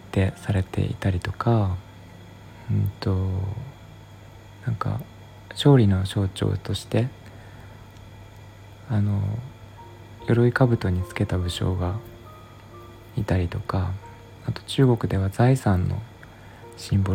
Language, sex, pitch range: Japanese, male, 95-115 Hz